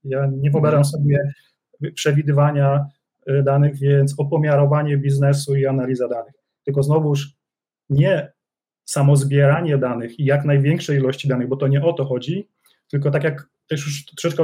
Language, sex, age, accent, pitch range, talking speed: Polish, male, 30-49, native, 140-160 Hz, 145 wpm